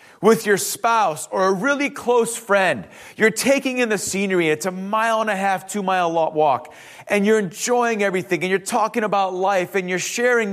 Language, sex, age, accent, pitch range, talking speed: English, male, 30-49, American, 195-265 Hz, 190 wpm